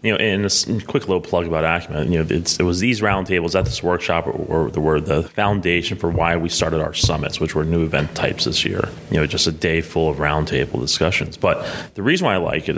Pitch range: 80-100 Hz